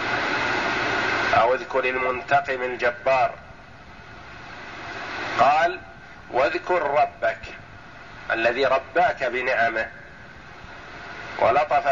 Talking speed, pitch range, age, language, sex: 55 wpm, 135-170 Hz, 50-69, Arabic, male